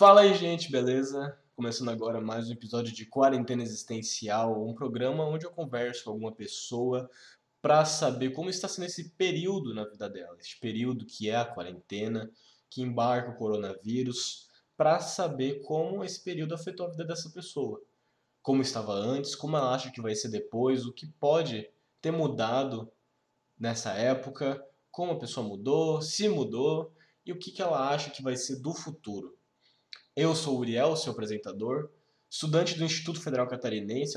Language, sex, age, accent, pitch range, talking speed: Portuguese, male, 20-39, Brazilian, 120-160 Hz, 165 wpm